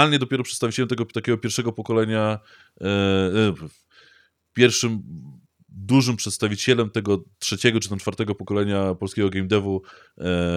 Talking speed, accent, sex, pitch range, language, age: 120 wpm, native, male, 95-120 Hz, Polish, 20-39